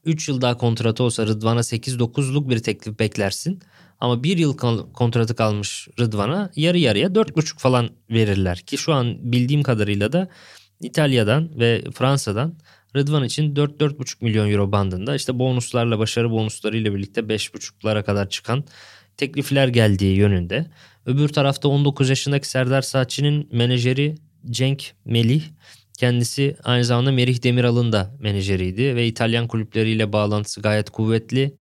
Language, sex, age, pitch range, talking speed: Turkish, male, 20-39, 105-135 Hz, 130 wpm